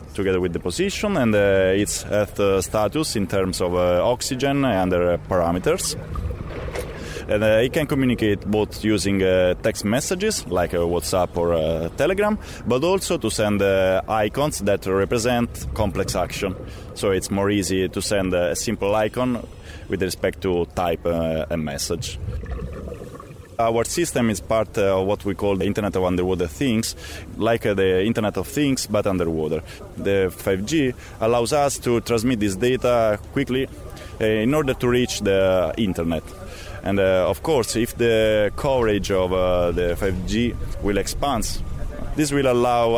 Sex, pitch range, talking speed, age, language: male, 90-115 Hz, 150 wpm, 20-39, English